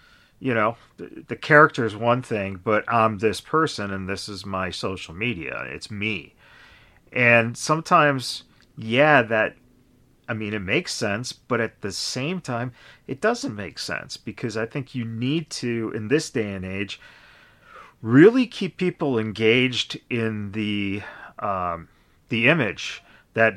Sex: male